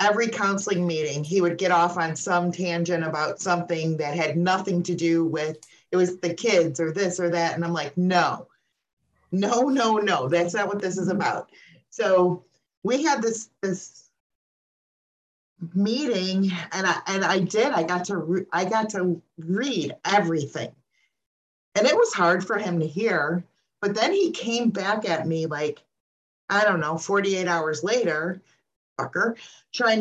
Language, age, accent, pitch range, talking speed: English, 40-59, American, 165-205 Hz, 165 wpm